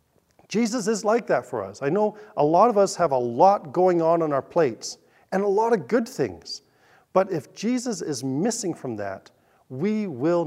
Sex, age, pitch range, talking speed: male, 40-59, 120-170 Hz, 200 wpm